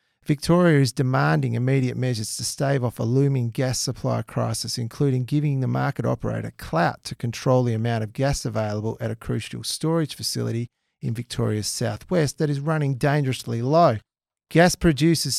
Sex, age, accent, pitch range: male, 40-59, Australian, 120-150 Hz